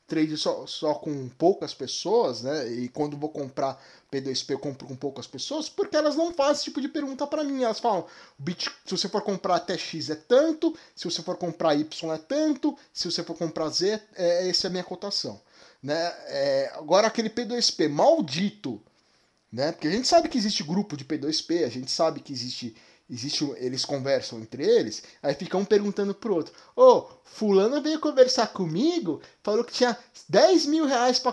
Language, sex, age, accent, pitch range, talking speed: Portuguese, male, 20-39, Brazilian, 170-275 Hz, 185 wpm